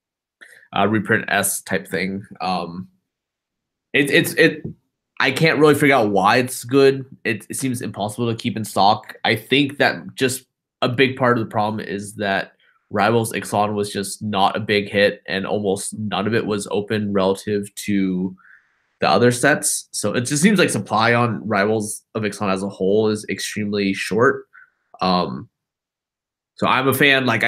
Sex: male